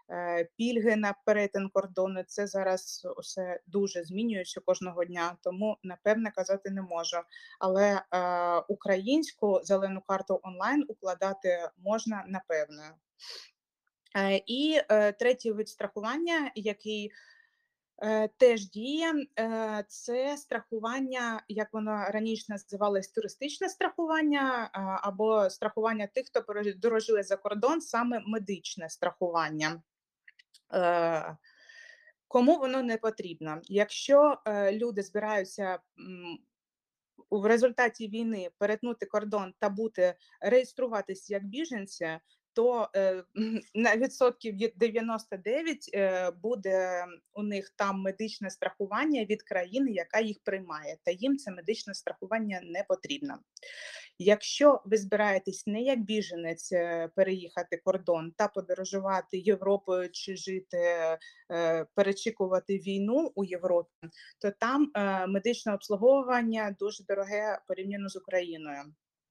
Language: Ukrainian